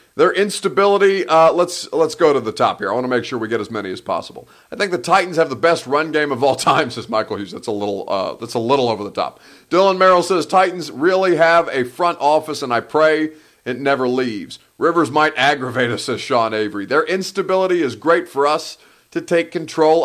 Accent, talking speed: American, 230 wpm